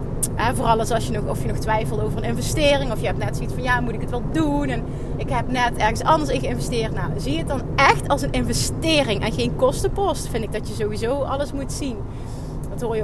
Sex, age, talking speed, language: female, 30-49, 240 wpm, Dutch